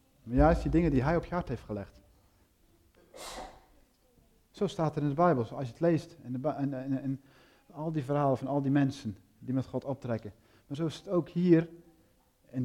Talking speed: 215 wpm